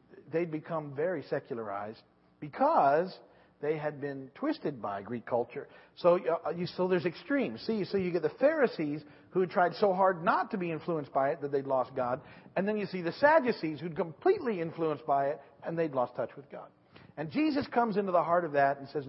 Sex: male